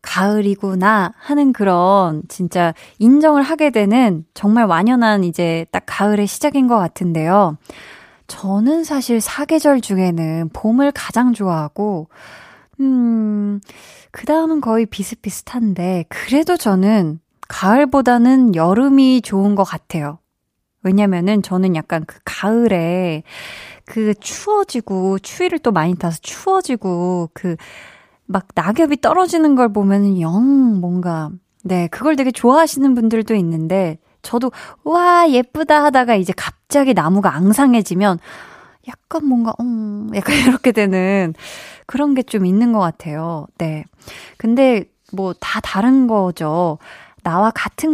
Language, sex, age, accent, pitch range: Korean, female, 20-39, native, 180-260 Hz